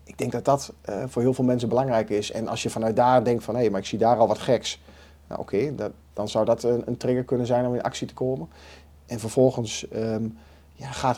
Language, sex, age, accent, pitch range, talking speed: Dutch, male, 40-59, Dutch, 95-125 Hz, 260 wpm